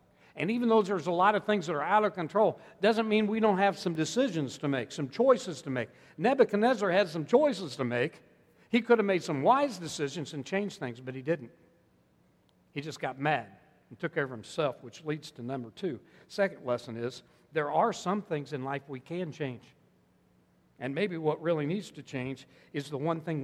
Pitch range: 135-180 Hz